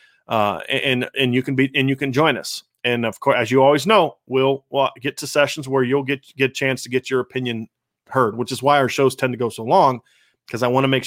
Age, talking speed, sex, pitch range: 30-49, 265 wpm, male, 125-150 Hz